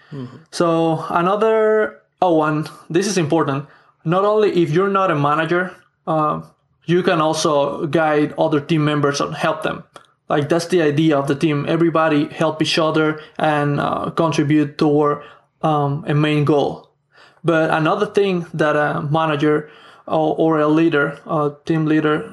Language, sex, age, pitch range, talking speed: English, male, 20-39, 150-170 Hz, 155 wpm